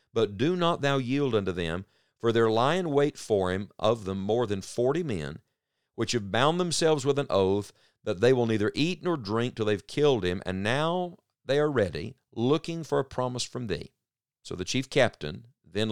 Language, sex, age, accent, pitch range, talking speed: English, male, 50-69, American, 100-140 Hz, 205 wpm